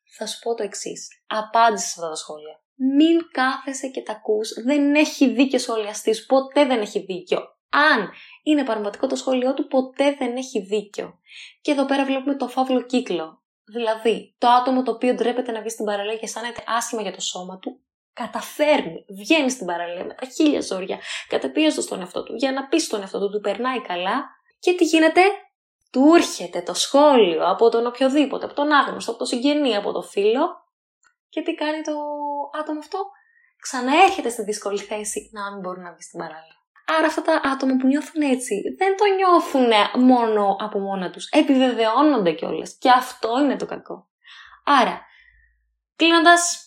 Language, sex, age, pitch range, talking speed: Greek, female, 20-39, 220-300 Hz, 175 wpm